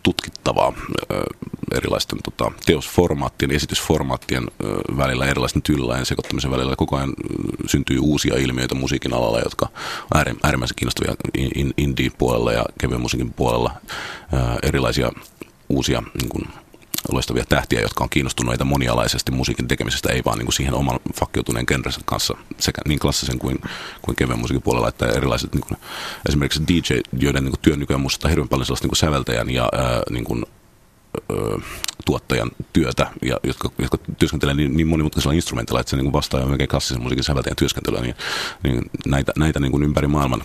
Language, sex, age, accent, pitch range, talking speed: Finnish, male, 40-59, native, 65-75 Hz, 150 wpm